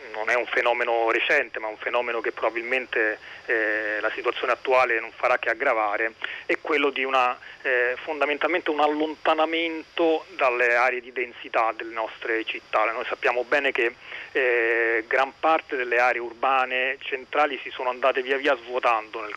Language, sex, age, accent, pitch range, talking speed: Italian, male, 40-59, native, 120-170 Hz, 155 wpm